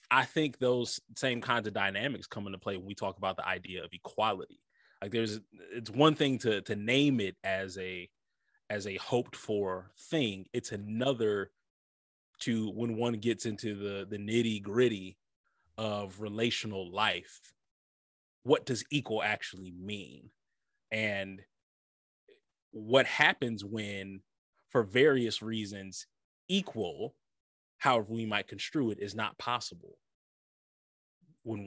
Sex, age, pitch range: male, 20-39, 100-120 Hz